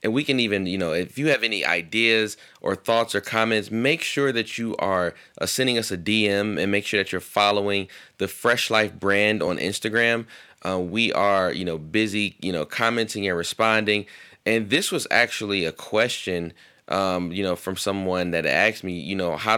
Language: English